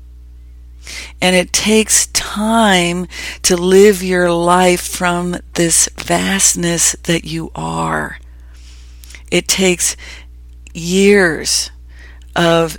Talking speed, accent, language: 85 wpm, American, English